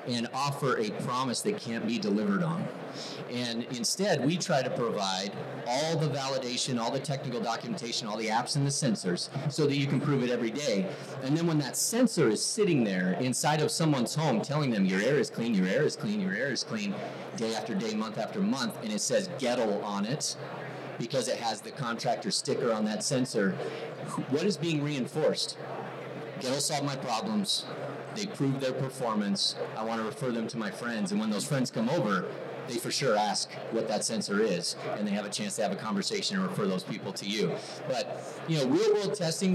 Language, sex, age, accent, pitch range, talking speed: English, male, 30-49, American, 115-170 Hz, 210 wpm